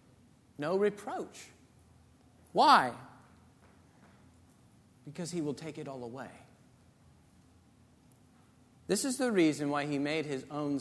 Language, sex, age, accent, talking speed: English, male, 40-59, American, 105 wpm